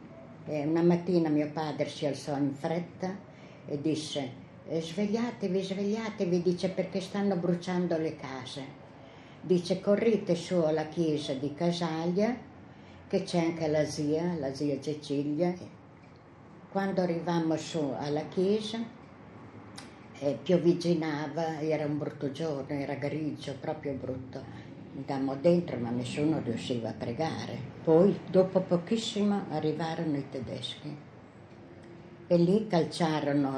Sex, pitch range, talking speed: female, 140-175 Hz, 115 wpm